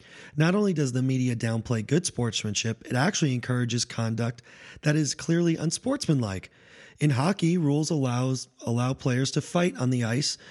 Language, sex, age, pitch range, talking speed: English, male, 30-49, 120-150 Hz, 155 wpm